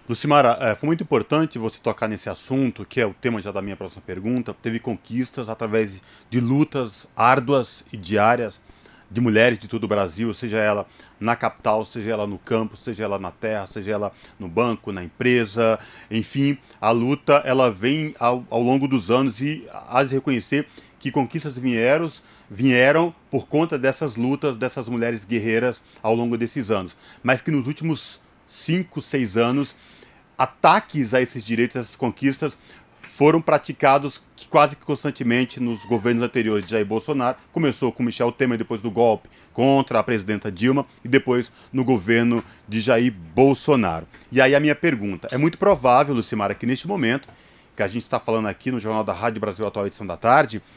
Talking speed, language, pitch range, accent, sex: 180 wpm, Portuguese, 110-135 Hz, Brazilian, male